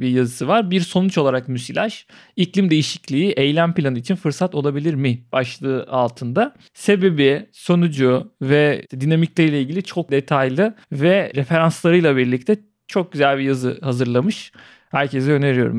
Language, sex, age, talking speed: Turkish, male, 40-59, 130 wpm